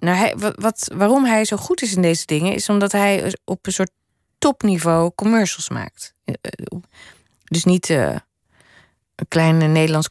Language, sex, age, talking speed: Dutch, female, 20-39, 155 wpm